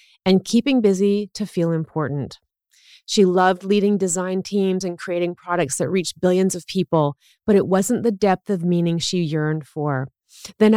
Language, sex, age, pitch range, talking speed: English, female, 30-49, 170-220 Hz, 165 wpm